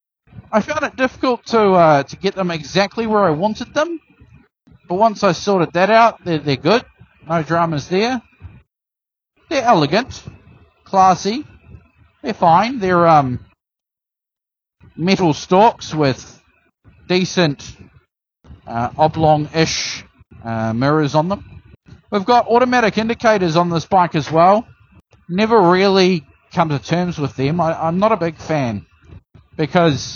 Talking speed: 130 wpm